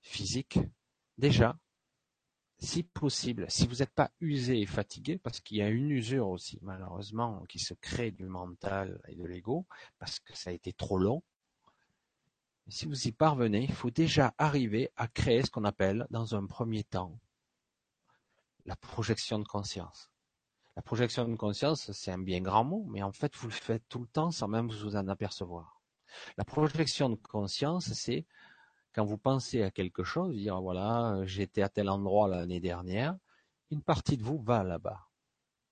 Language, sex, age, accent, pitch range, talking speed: French, male, 40-59, French, 95-135 Hz, 175 wpm